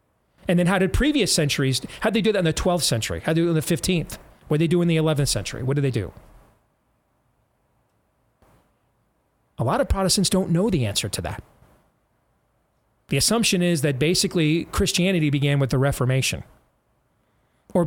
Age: 30-49